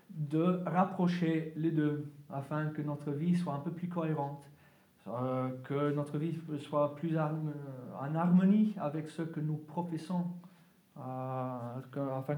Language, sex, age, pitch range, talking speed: French, male, 40-59, 145-185 Hz, 145 wpm